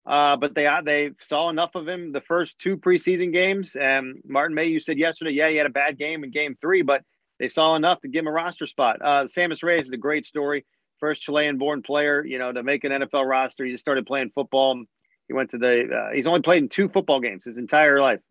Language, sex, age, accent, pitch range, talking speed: English, male, 40-59, American, 135-170 Hz, 250 wpm